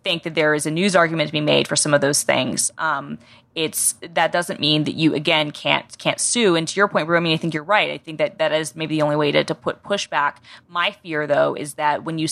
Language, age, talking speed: English, 20-39, 280 wpm